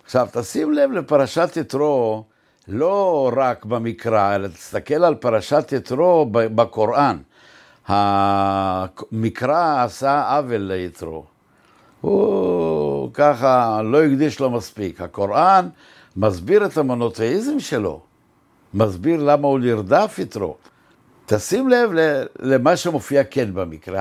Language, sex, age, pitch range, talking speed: Hebrew, male, 60-79, 110-145 Hz, 100 wpm